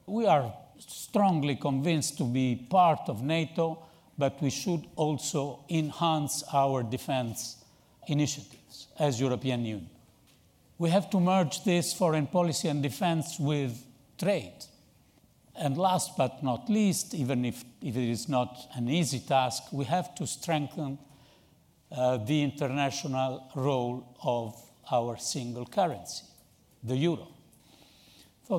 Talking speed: 125 wpm